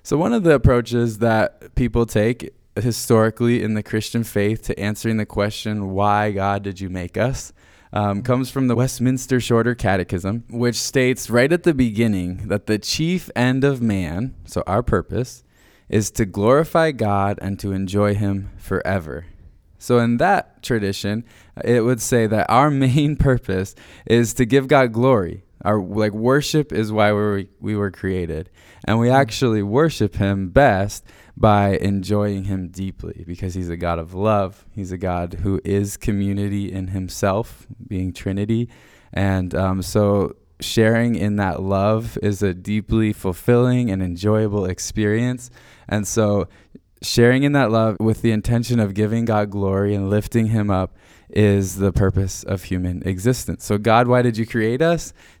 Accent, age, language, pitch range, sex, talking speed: American, 20-39, English, 95-120 Hz, male, 160 wpm